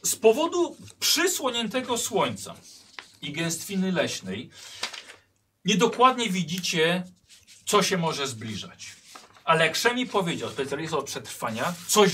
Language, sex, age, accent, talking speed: Polish, male, 40-59, native, 105 wpm